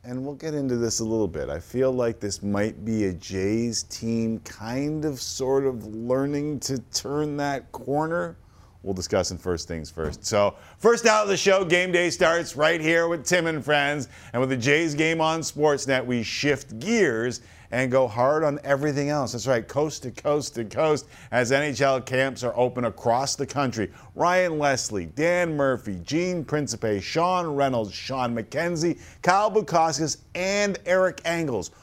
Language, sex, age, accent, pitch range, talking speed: English, male, 50-69, American, 110-150 Hz, 175 wpm